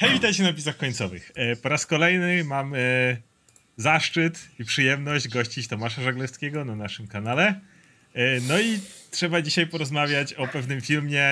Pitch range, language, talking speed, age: 130-170 Hz, Polish, 140 wpm, 30-49